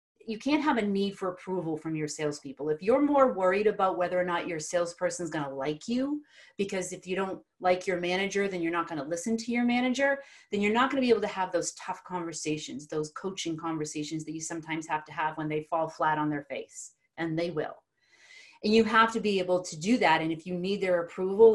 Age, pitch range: 30-49, 170-215 Hz